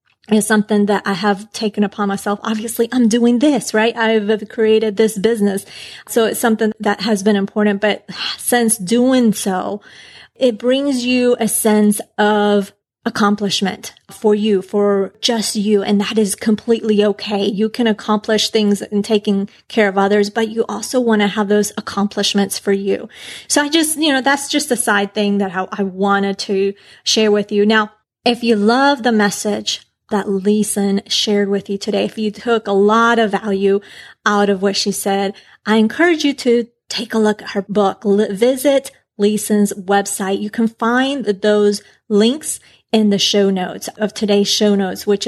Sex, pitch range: female, 200-225 Hz